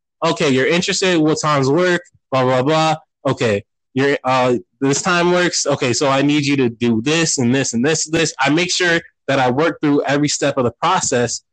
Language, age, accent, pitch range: English, 20-39, American, 130-170 Hz